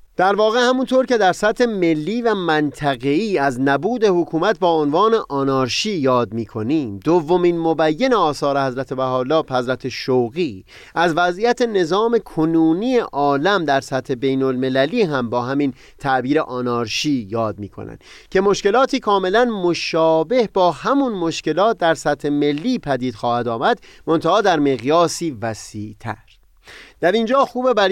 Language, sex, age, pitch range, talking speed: Persian, male, 30-49, 130-195 Hz, 135 wpm